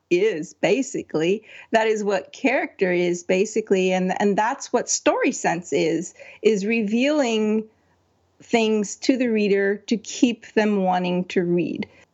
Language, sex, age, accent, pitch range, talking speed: English, female, 40-59, American, 185-240 Hz, 135 wpm